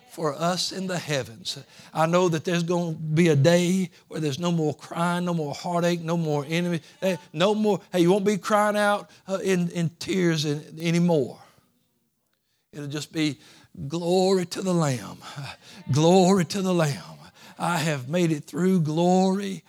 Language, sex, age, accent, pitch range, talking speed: English, male, 60-79, American, 150-185 Hz, 165 wpm